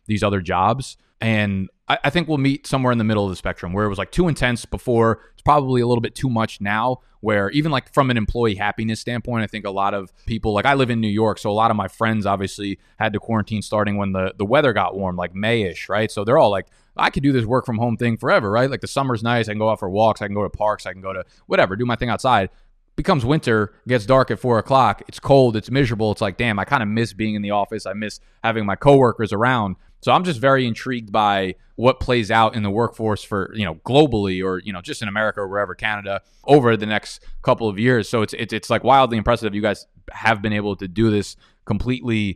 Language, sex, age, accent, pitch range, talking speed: English, male, 20-39, American, 105-125 Hz, 260 wpm